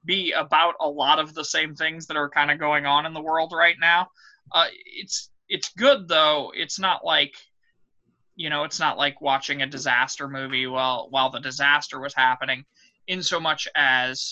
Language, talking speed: English, 195 wpm